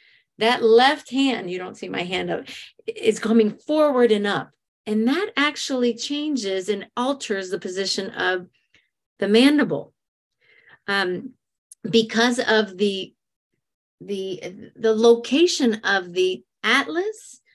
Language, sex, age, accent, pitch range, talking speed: English, female, 40-59, American, 205-260 Hz, 120 wpm